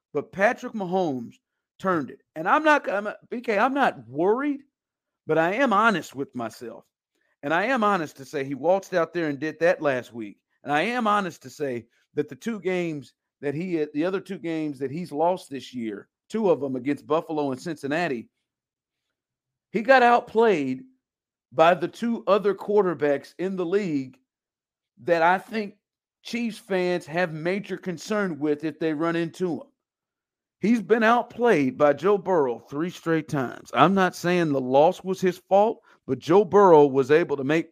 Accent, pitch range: American, 145-200 Hz